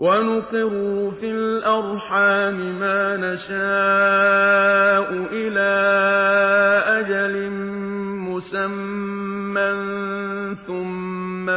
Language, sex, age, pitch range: Persian, male, 50-69, 180-200 Hz